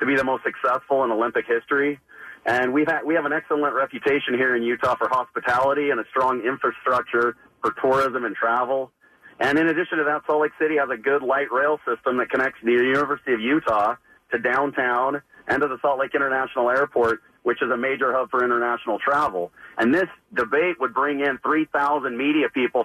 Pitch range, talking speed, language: 130-145 Hz, 190 wpm, English